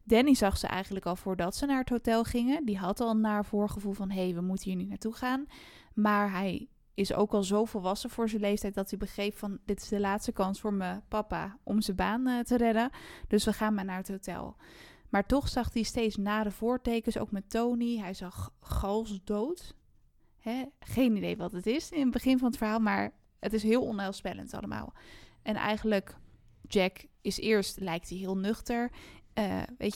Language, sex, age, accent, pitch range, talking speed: Dutch, female, 20-39, Dutch, 195-230 Hz, 200 wpm